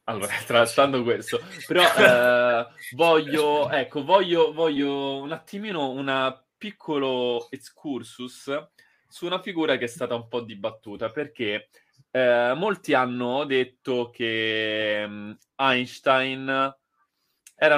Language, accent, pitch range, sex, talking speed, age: Italian, native, 120-160 Hz, male, 105 wpm, 20-39